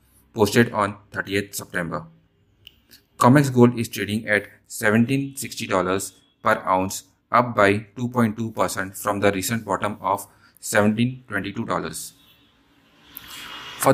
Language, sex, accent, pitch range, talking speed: English, male, Indian, 100-120 Hz, 110 wpm